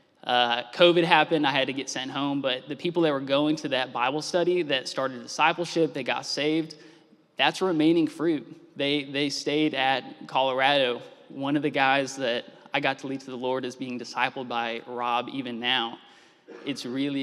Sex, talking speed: male, 190 wpm